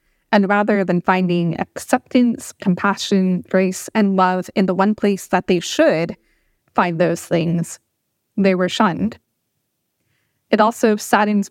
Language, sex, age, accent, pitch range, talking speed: English, female, 20-39, American, 185-230 Hz, 130 wpm